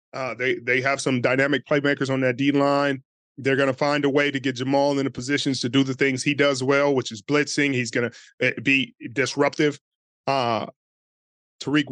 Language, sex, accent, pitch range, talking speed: English, male, American, 135-150 Hz, 190 wpm